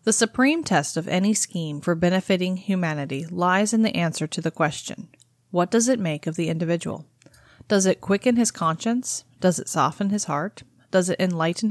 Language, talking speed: English, 185 wpm